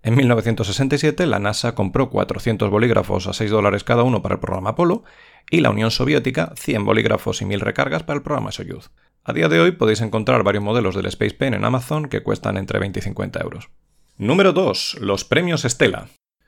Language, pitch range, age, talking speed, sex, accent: Spanish, 105-135 Hz, 40-59, 195 wpm, male, Spanish